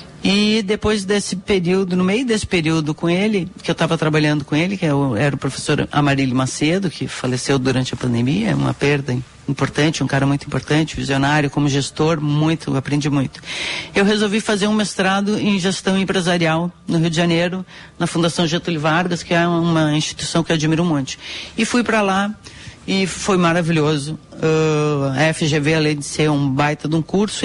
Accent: Brazilian